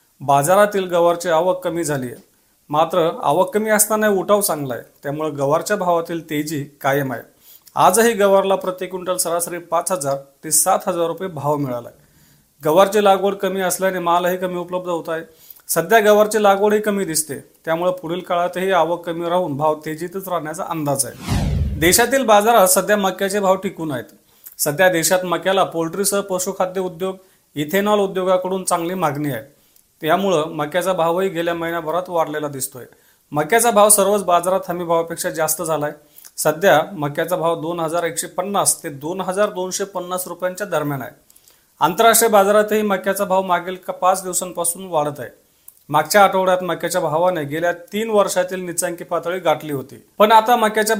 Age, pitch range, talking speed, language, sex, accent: 40-59, 160-190 Hz, 145 wpm, Marathi, male, native